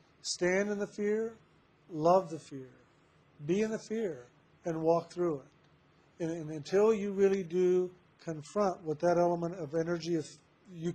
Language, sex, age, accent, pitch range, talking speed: English, male, 50-69, American, 155-175 Hz, 155 wpm